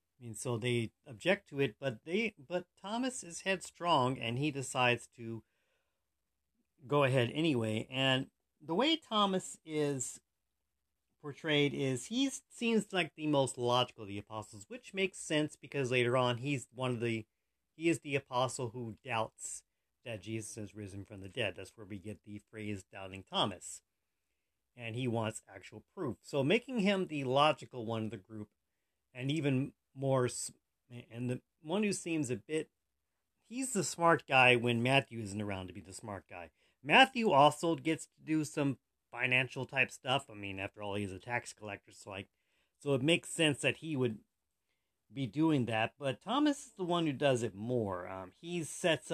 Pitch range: 110-150 Hz